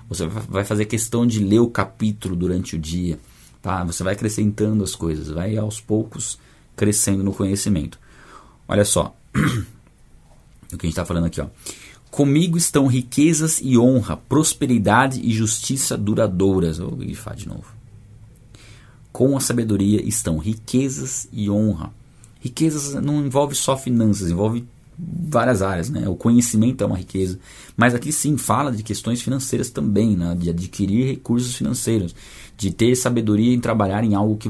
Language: Portuguese